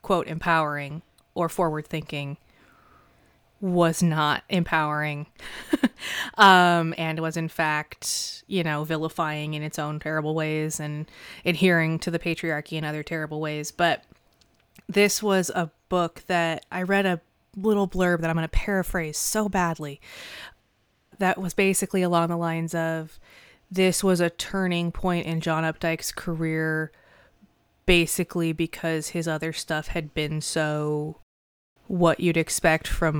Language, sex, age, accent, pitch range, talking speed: English, female, 20-39, American, 155-185 Hz, 135 wpm